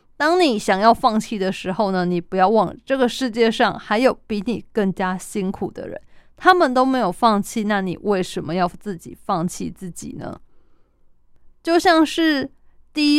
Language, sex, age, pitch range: Chinese, female, 20-39, 195-255 Hz